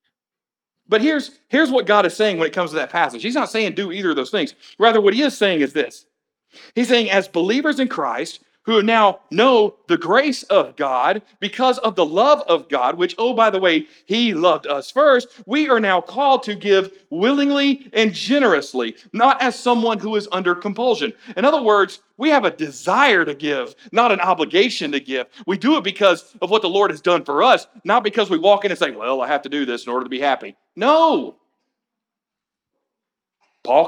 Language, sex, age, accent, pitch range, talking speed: English, male, 50-69, American, 195-265 Hz, 210 wpm